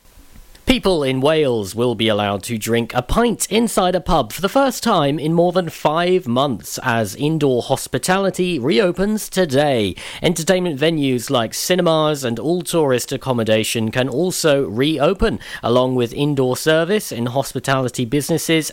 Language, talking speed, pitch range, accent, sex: English, 145 wpm, 125-170 Hz, British, male